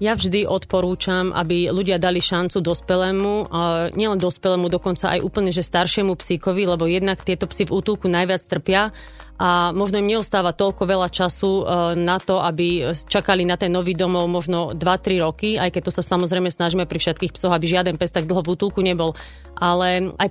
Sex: female